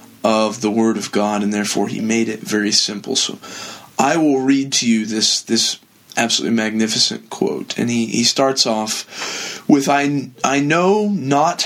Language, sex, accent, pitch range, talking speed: English, male, American, 115-140 Hz, 170 wpm